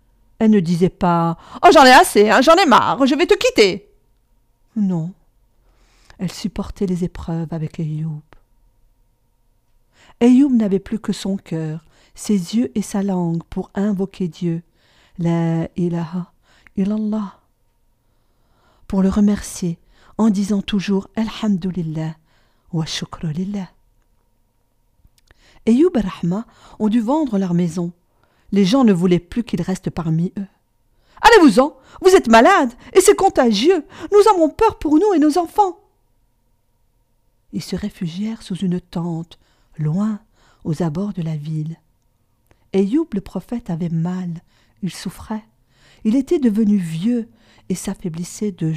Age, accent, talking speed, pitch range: 50-69, French, 140 wpm, 160-220 Hz